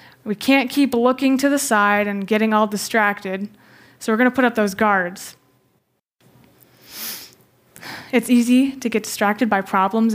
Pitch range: 210-270 Hz